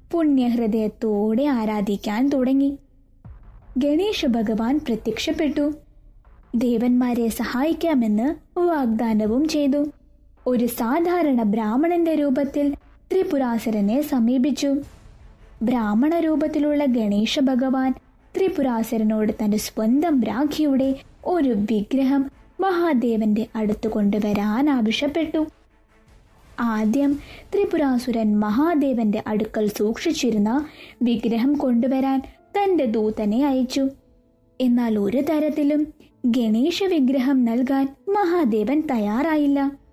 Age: 20-39